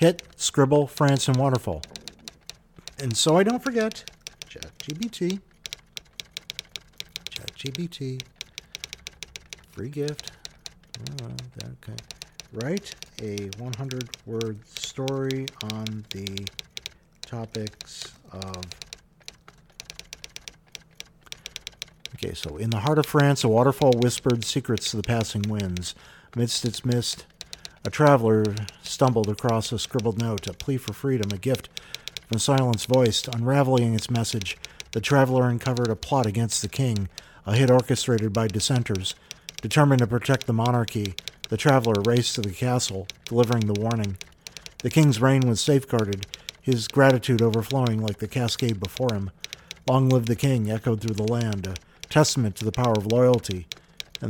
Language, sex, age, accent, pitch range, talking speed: English, male, 50-69, American, 105-135 Hz, 130 wpm